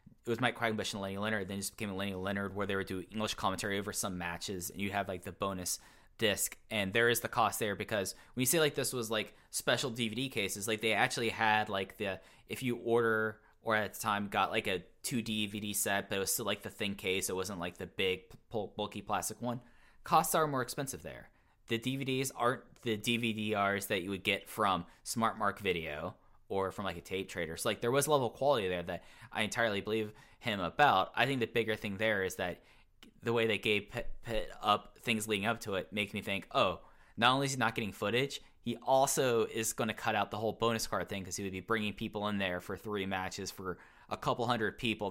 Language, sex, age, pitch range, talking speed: English, male, 10-29, 100-120 Hz, 230 wpm